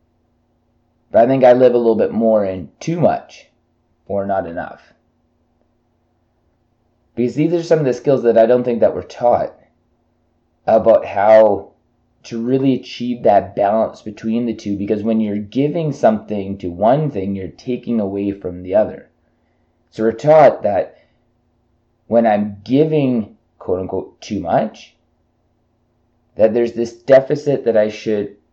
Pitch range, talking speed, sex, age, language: 95-120 Hz, 150 wpm, male, 30-49, English